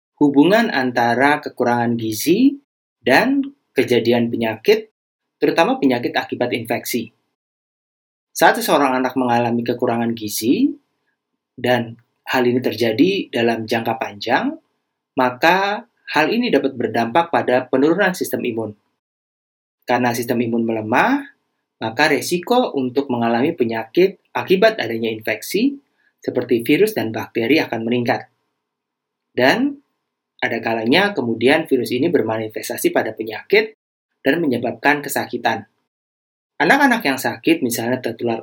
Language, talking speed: Indonesian, 105 wpm